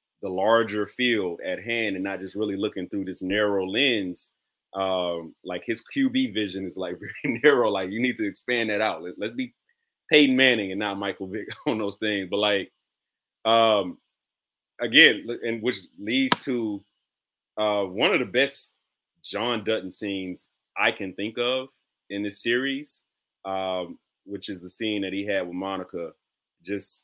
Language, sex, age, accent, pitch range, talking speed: English, male, 30-49, American, 100-120 Hz, 165 wpm